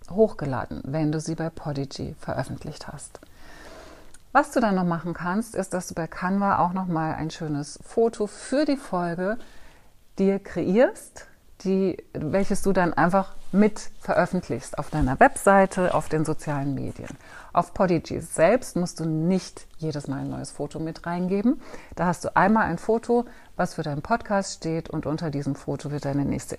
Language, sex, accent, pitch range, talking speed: German, female, German, 150-190 Hz, 165 wpm